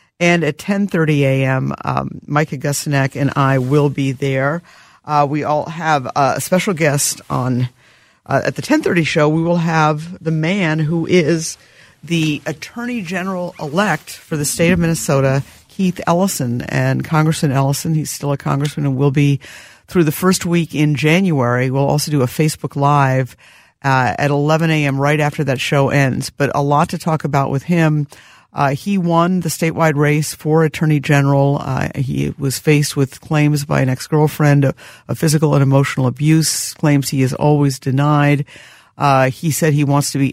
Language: English